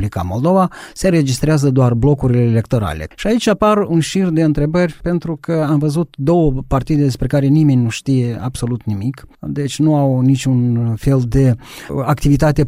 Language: Romanian